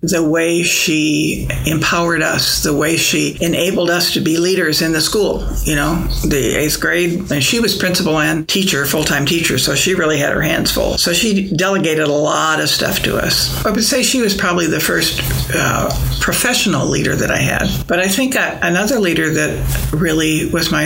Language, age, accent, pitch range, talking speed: English, 60-79, American, 155-185 Hz, 195 wpm